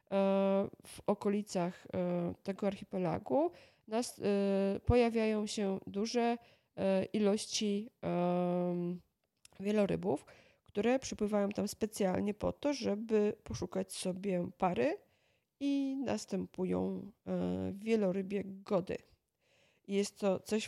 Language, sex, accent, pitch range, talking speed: Polish, female, native, 185-215 Hz, 80 wpm